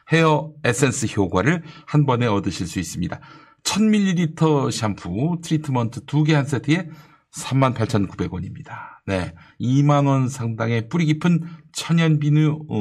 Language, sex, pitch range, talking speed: English, male, 110-155 Hz, 105 wpm